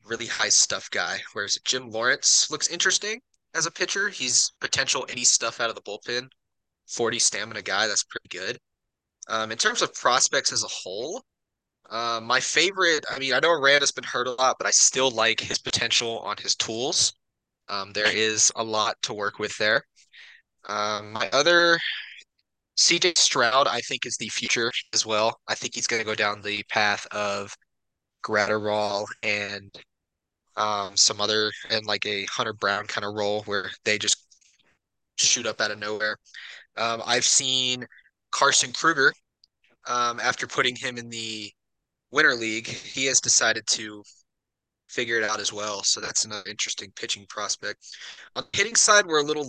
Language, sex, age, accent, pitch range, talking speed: English, male, 20-39, American, 105-130 Hz, 170 wpm